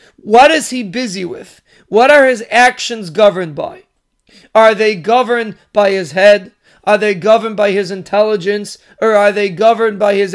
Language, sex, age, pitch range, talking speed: English, male, 40-59, 205-235 Hz, 170 wpm